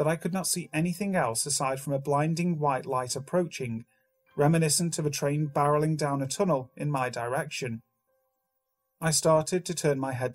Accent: British